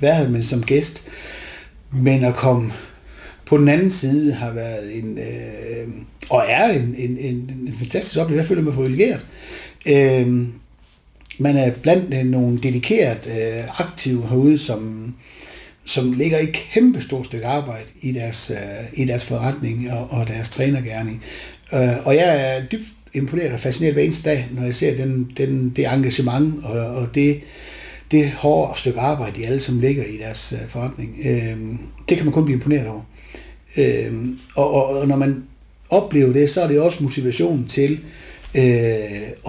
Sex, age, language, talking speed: male, 60-79, Danish, 165 wpm